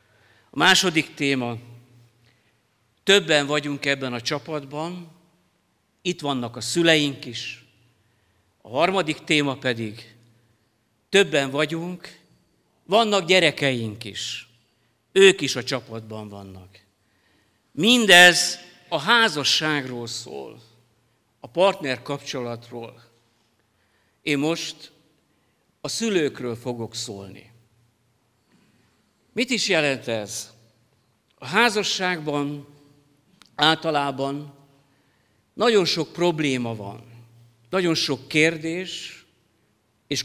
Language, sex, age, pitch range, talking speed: Hungarian, male, 50-69, 115-160 Hz, 80 wpm